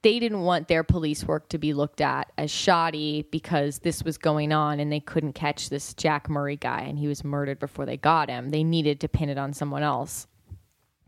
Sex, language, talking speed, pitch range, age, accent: female, English, 220 wpm, 150-180 Hz, 20-39, American